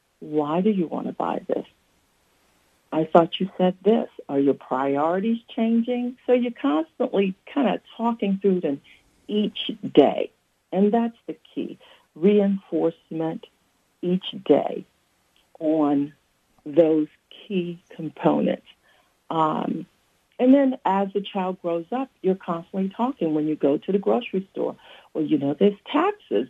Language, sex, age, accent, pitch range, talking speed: English, female, 60-79, American, 155-215 Hz, 135 wpm